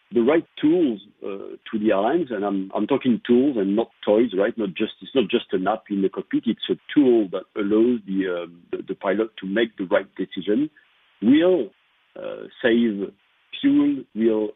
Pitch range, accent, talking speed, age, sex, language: 100-130 Hz, French, 185 wpm, 50-69, male, English